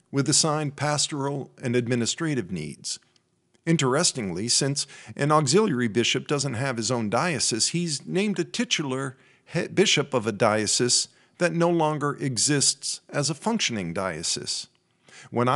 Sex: male